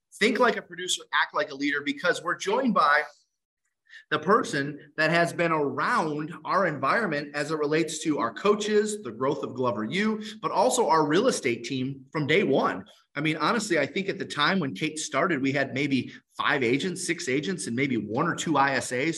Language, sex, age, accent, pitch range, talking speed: English, male, 30-49, American, 145-205 Hz, 200 wpm